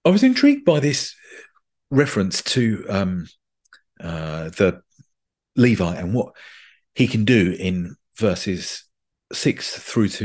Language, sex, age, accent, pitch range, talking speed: English, male, 40-59, British, 95-140 Hz, 125 wpm